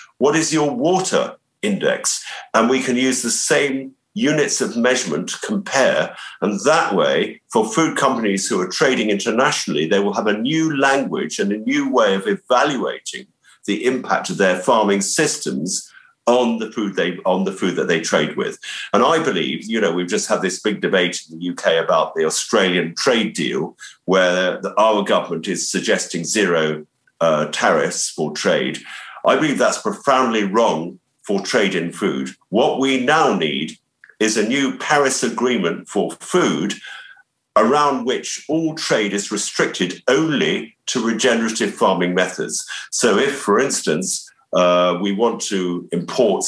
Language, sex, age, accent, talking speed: English, male, 50-69, British, 155 wpm